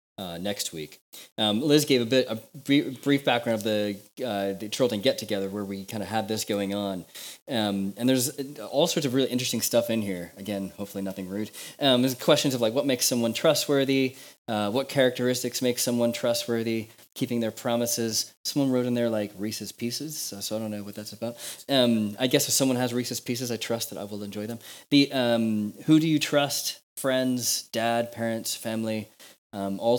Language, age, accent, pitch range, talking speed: English, 20-39, American, 105-130 Hz, 200 wpm